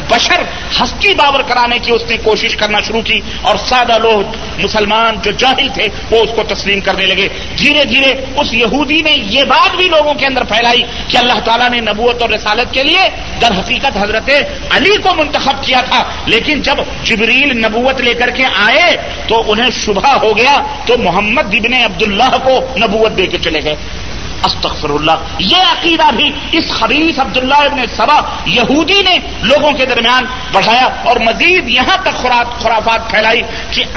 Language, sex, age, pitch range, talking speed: Urdu, male, 50-69, 225-290 Hz, 180 wpm